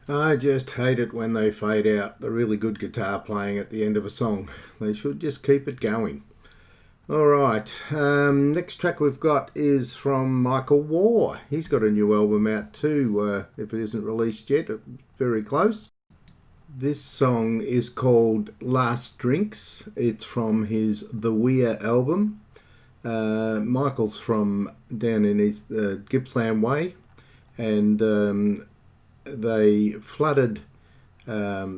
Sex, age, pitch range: male, 50-69, 105-130 Hz